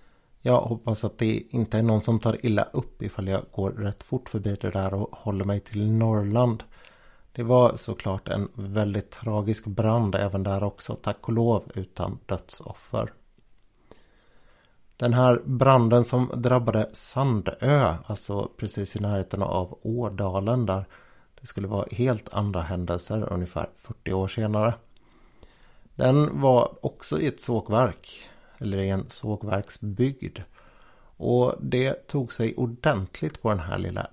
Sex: male